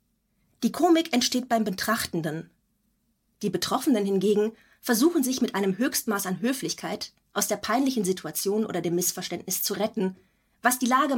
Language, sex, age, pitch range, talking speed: German, female, 30-49, 190-250 Hz, 145 wpm